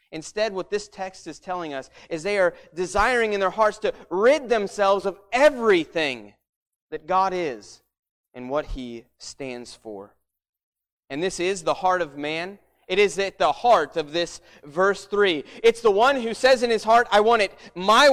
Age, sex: 30-49, male